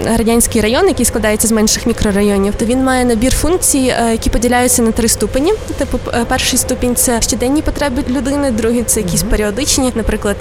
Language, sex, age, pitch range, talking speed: Ukrainian, female, 20-39, 220-255 Hz, 165 wpm